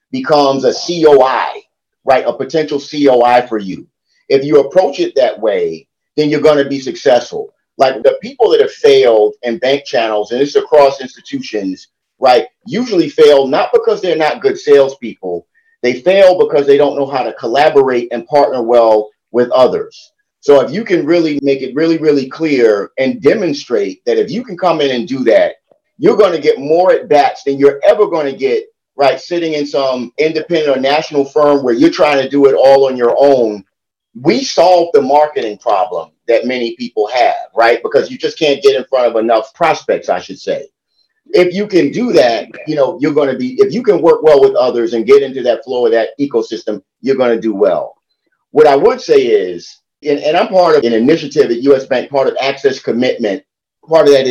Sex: male